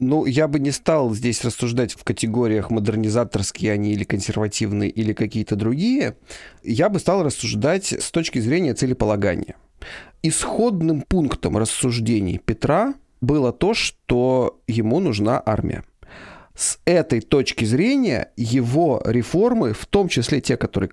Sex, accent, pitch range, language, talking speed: male, native, 110-145 Hz, Russian, 130 wpm